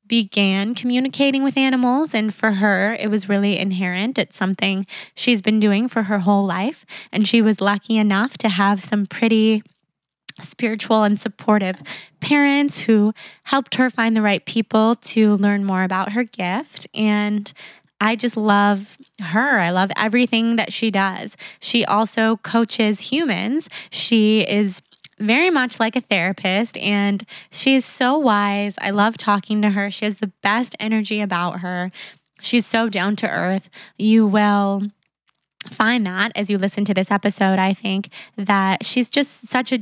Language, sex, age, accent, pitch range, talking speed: English, female, 20-39, American, 195-230 Hz, 160 wpm